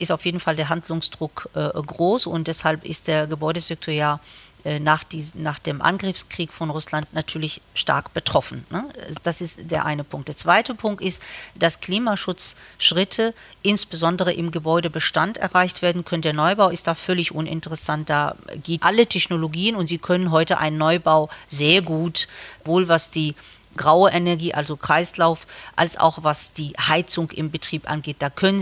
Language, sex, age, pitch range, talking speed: German, female, 40-59, 155-185 Hz, 165 wpm